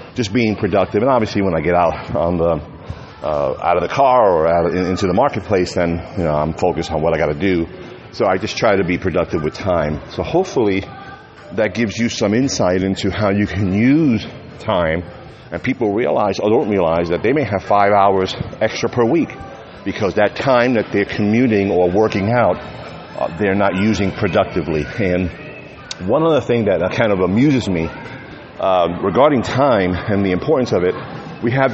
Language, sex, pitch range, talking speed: English, male, 95-120 Hz, 190 wpm